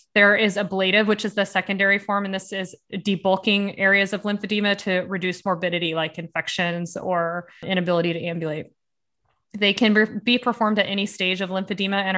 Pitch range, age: 185-210 Hz, 20-39